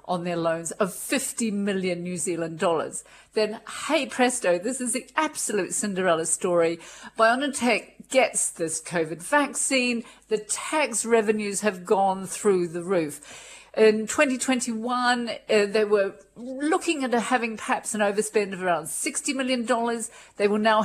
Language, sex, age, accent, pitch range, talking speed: English, female, 50-69, British, 190-240 Hz, 145 wpm